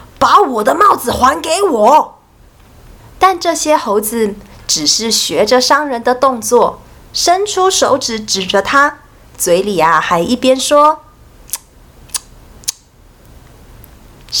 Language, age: Chinese, 30-49